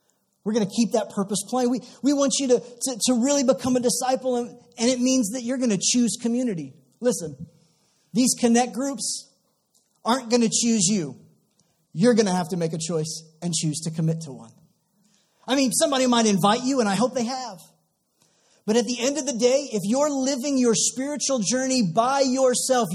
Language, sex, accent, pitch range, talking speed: English, male, American, 175-245 Hz, 200 wpm